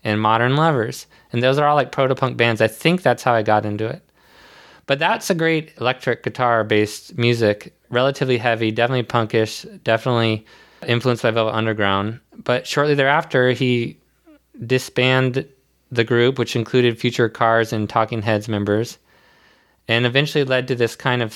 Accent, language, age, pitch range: American, English, 20-39, 110-130 Hz